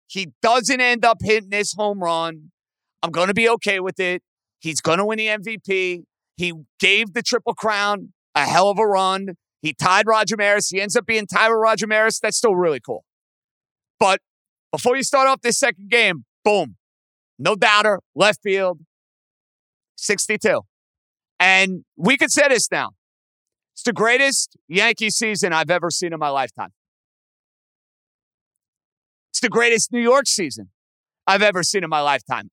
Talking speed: 165 wpm